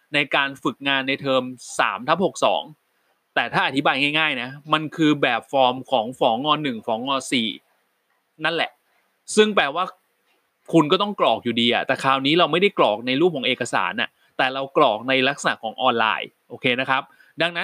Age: 20-39